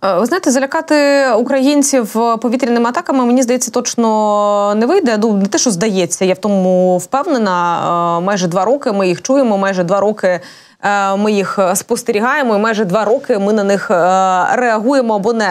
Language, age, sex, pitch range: Ukrainian, 20-39, female, 200-255 Hz